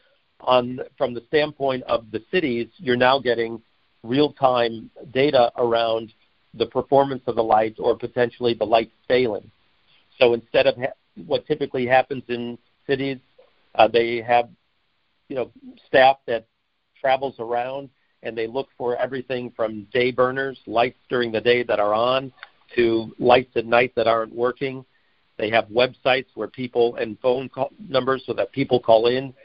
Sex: male